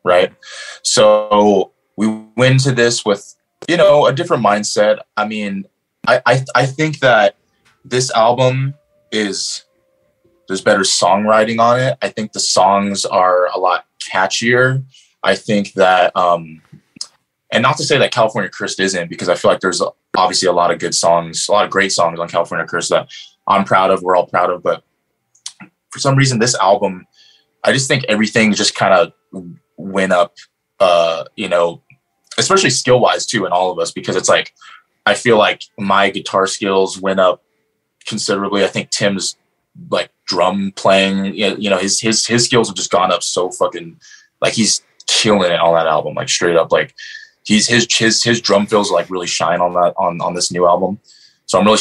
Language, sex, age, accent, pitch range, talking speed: English, male, 20-39, American, 90-120 Hz, 185 wpm